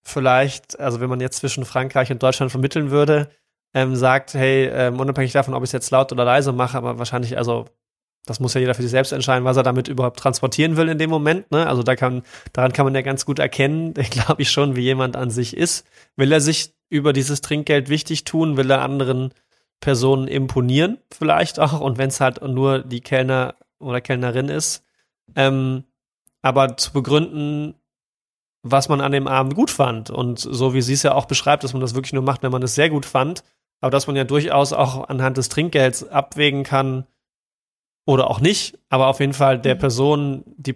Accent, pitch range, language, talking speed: German, 130-150 Hz, German, 210 wpm